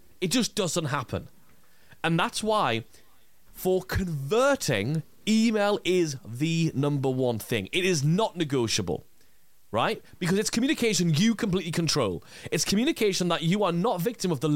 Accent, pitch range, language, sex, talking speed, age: British, 130-185 Hz, English, male, 145 wpm, 30-49